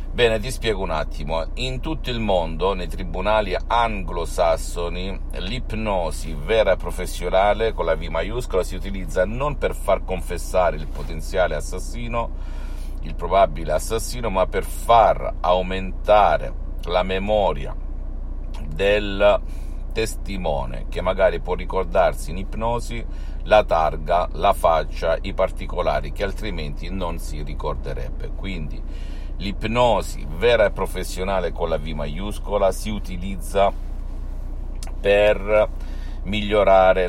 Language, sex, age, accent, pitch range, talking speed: Italian, male, 50-69, native, 75-95 Hz, 115 wpm